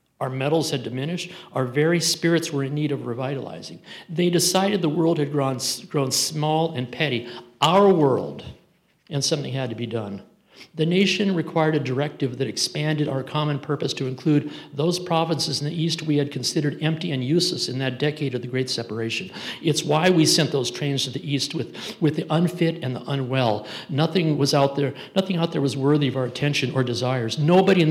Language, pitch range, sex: English, 135-165 Hz, male